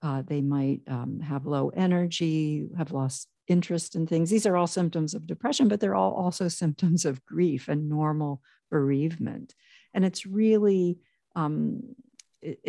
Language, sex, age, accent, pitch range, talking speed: English, female, 50-69, American, 150-185 Hz, 150 wpm